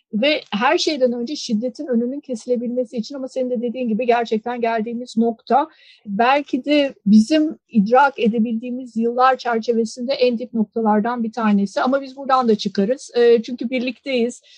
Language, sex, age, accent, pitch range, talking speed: Turkish, female, 50-69, native, 230-255 Hz, 150 wpm